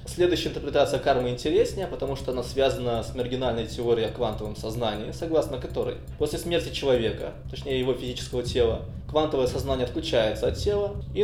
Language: Russian